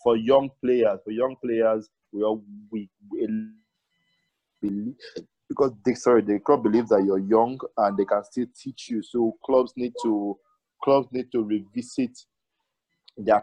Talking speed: 155 wpm